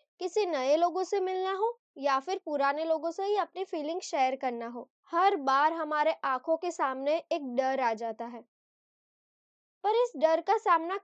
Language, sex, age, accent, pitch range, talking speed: Hindi, female, 20-39, native, 260-355 Hz, 185 wpm